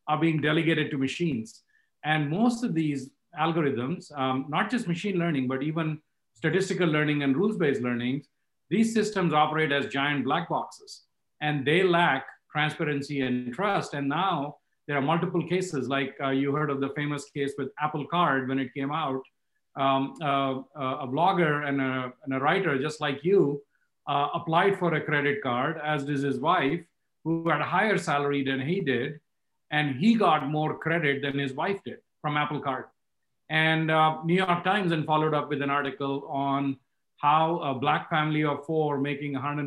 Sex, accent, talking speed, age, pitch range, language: male, Indian, 175 wpm, 50-69, 140-165 Hz, English